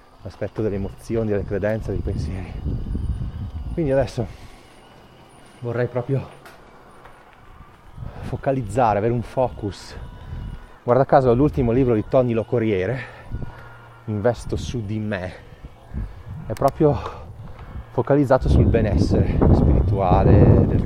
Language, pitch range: Italian, 105-130 Hz